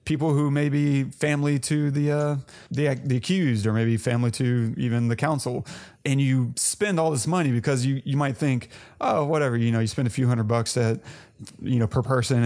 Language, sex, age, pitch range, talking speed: English, male, 30-49, 120-145 Hz, 205 wpm